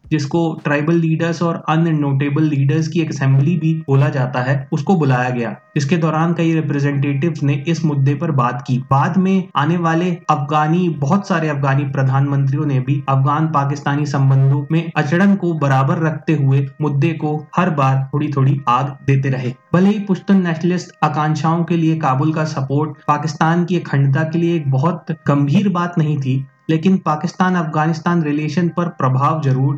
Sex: male